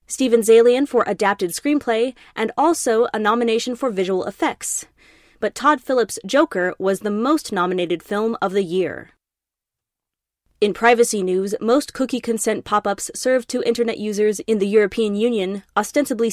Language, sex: English, female